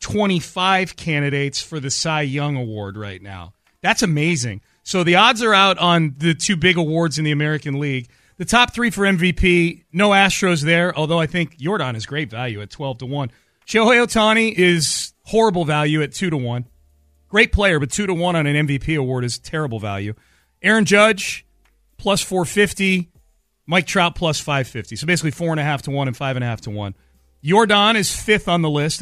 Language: English